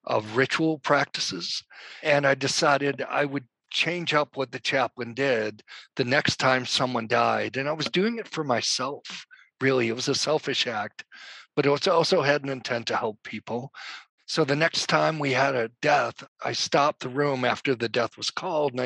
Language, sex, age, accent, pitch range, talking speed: English, male, 50-69, American, 130-155 Hz, 190 wpm